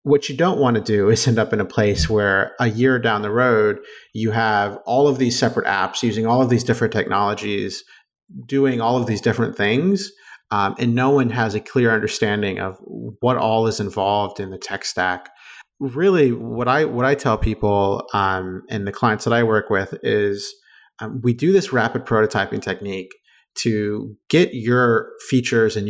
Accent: American